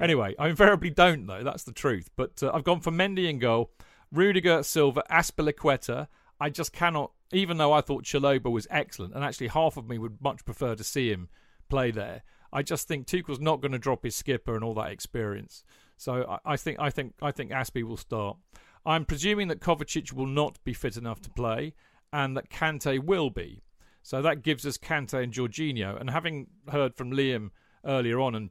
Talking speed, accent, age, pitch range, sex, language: 210 wpm, British, 40-59, 120-150 Hz, male, English